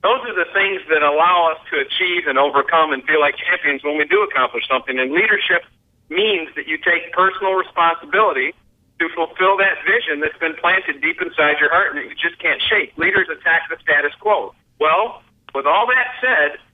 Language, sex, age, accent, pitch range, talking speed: English, male, 50-69, American, 155-200 Hz, 195 wpm